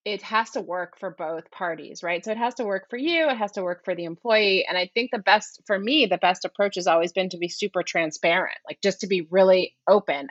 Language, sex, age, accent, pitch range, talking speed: English, female, 30-49, American, 160-200 Hz, 260 wpm